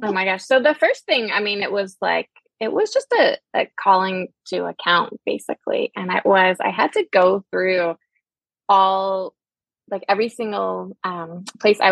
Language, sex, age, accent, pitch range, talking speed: English, female, 20-39, American, 175-220 Hz, 180 wpm